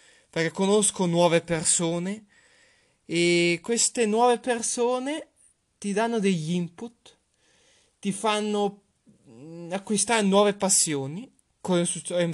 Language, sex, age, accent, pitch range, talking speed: Italian, male, 20-39, native, 155-200 Hz, 90 wpm